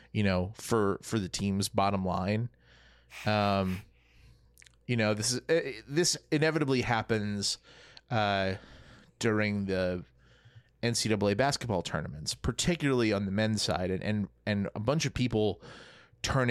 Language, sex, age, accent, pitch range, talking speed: English, male, 30-49, American, 95-125 Hz, 125 wpm